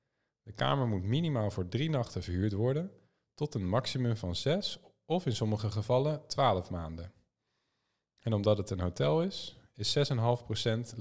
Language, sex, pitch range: Dutch, male, 100-125 Hz